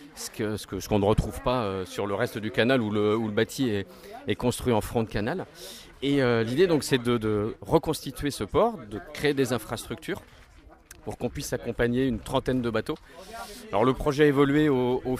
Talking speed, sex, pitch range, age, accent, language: 205 wpm, male, 110-135 Hz, 40-59, French, French